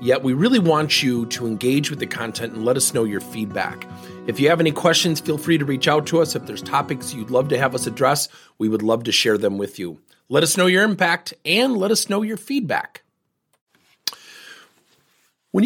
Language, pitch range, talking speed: English, 110-165 Hz, 220 wpm